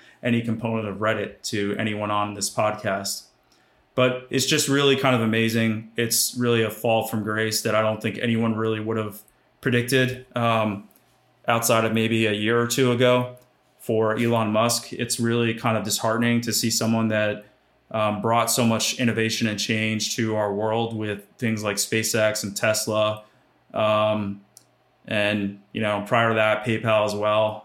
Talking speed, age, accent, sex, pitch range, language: 170 wpm, 20-39, American, male, 105-115 Hz, English